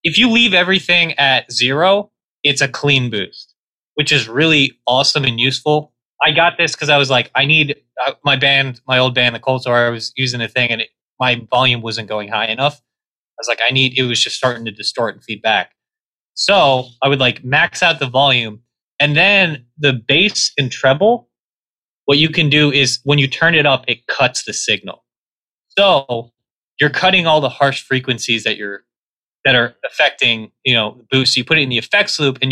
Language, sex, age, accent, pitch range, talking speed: English, male, 20-39, American, 120-150 Hz, 205 wpm